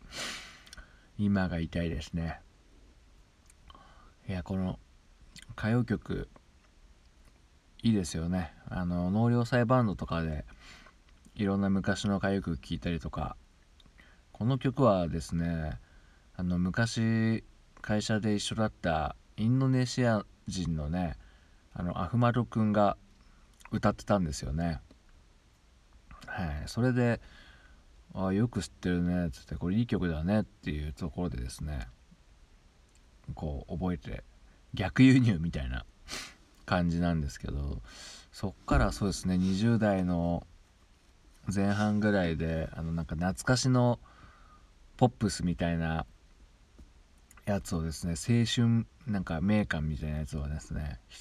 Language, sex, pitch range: Japanese, male, 75-100 Hz